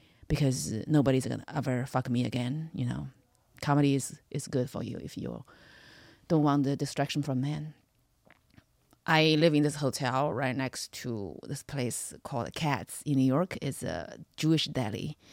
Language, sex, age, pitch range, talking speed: English, female, 30-49, 135-165 Hz, 170 wpm